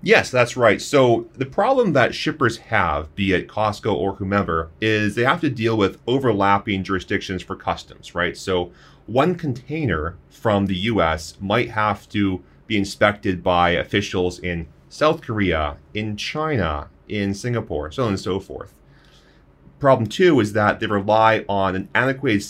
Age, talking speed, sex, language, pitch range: 30-49, 155 wpm, male, English, 95-115 Hz